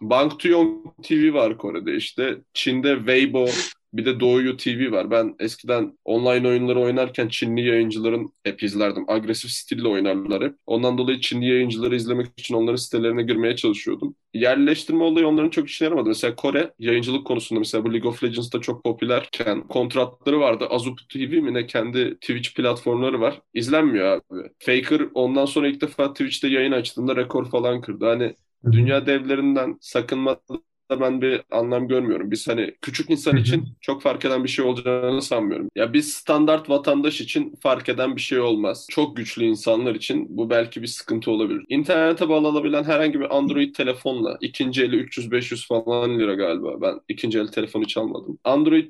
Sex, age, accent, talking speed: male, 20-39, native, 165 wpm